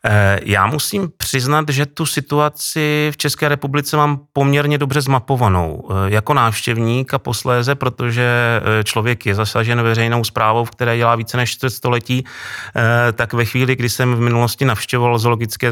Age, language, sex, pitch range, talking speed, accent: 30-49, Czech, male, 115-130 Hz, 145 wpm, native